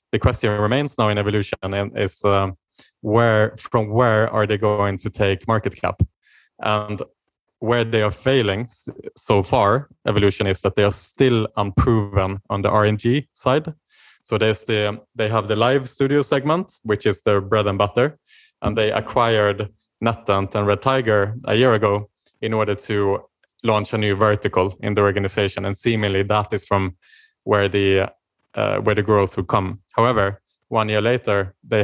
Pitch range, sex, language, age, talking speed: 100-115 Hz, male, Danish, 20-39, 170 wpm